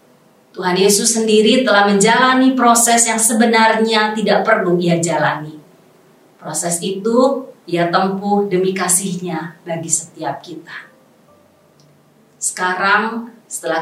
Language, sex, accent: Indonesian, female, native